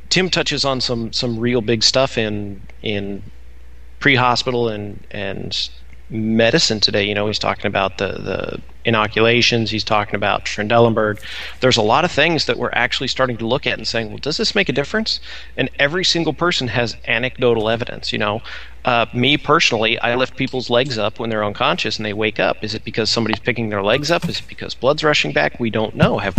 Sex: male